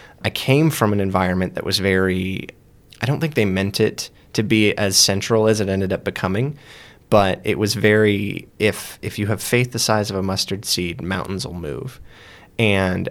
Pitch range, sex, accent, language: 95-120 Hz, male, American, English